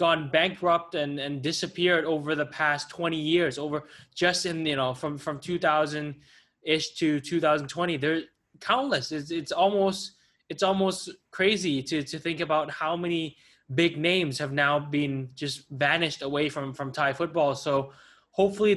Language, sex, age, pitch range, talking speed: English, male, 10-29, 140-165 Hz, 155 wpm